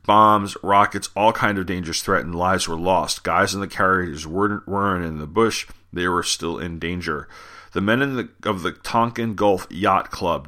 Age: 40-59